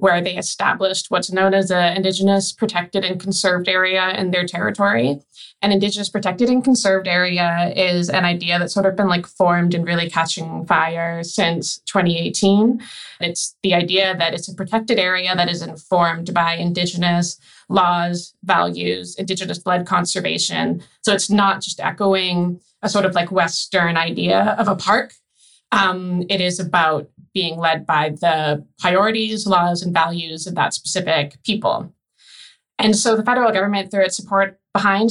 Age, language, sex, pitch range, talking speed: 20-39, English, female, 175-195 Hz, 160 wpm